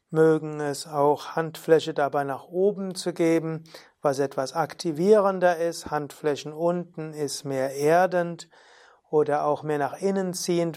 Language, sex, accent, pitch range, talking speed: German, male, German, 150-180 Hz, 135 wpm